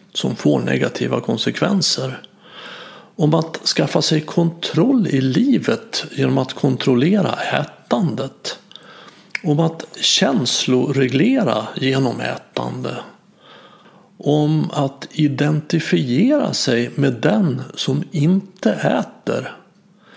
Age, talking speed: 50-69, 85 wpm